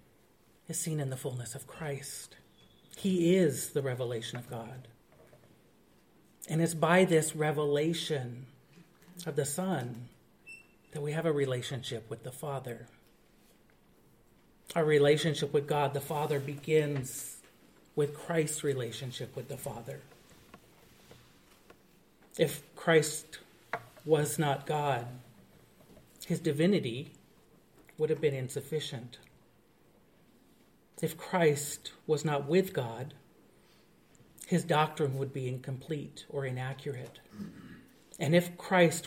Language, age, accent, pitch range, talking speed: English, 40-59, American, 135-165 Hz, 105 wpm